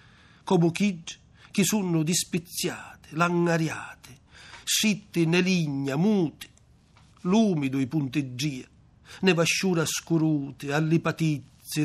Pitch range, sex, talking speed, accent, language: 145-175 Hz, male, 85 wpm, native, Italian